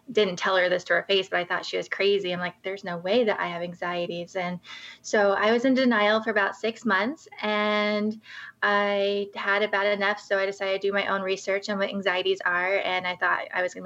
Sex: female